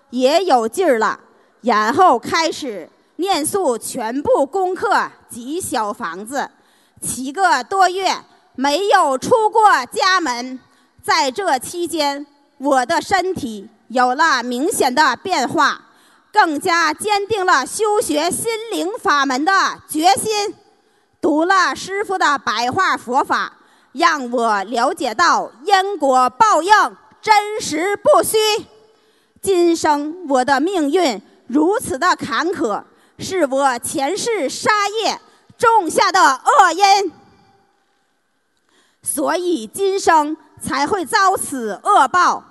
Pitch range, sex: 280-395 Hz, female